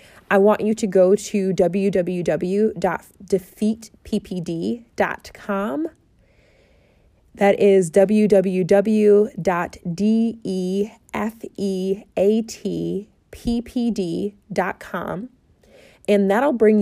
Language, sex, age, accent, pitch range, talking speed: English, female, 20-39, American, 180-210 Hz, 45 wpm